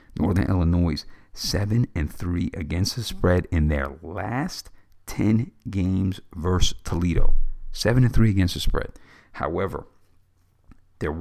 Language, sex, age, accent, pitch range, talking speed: English, male, 50-69, American, 80-100 Hz, 125 wpm